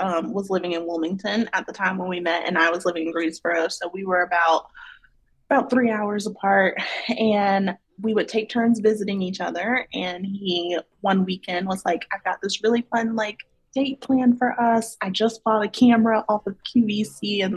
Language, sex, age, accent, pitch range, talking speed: English, female, 20-39, American, 190-235 Hz, 200 wpm